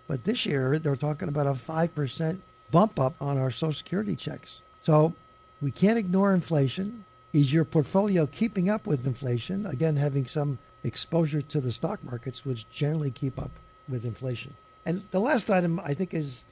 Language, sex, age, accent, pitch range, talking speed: English, male, 60-79, American, 140-195 Hz, 175 wpm